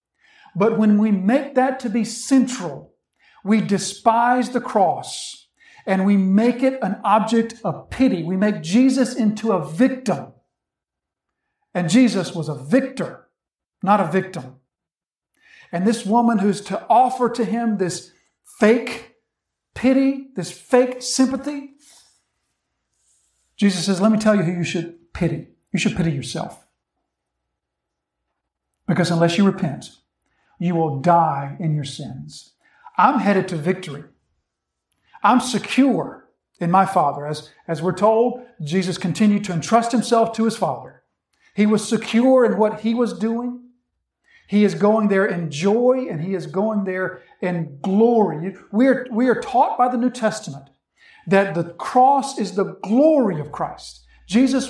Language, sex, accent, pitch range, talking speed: English, male, American, 180-245 Hz, 145 wpm